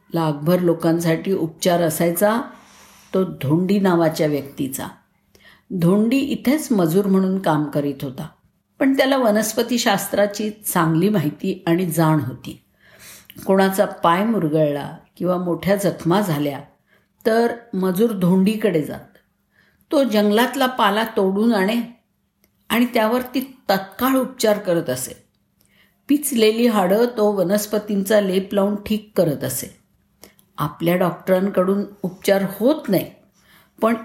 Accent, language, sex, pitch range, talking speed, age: native, Marathi, female, 175-220 Hz, 110 wpm, 50-69